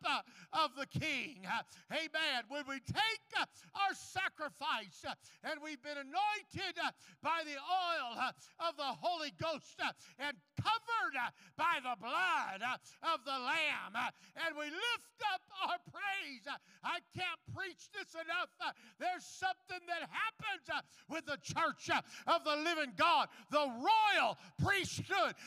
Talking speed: 125 wpm